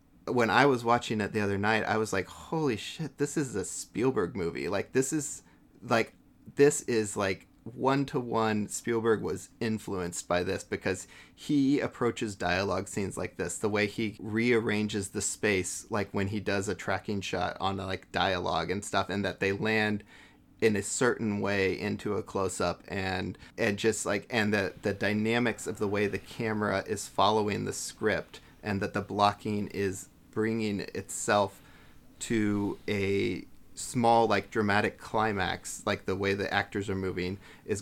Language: English